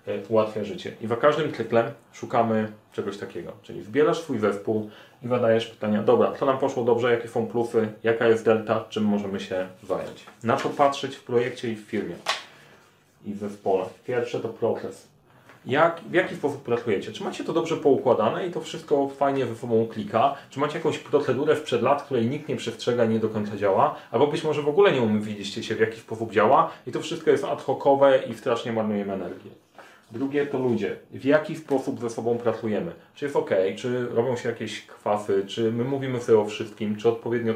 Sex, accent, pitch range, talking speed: male, native, 110-135 Hz, 200 wpm